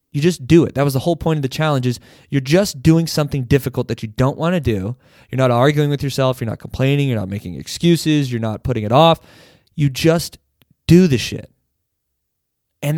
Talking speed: 215 wpm